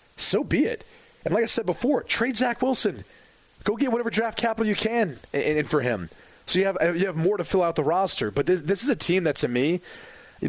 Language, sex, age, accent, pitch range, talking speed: English, male, 30-49, American, 125-175 Hz, 240 wpm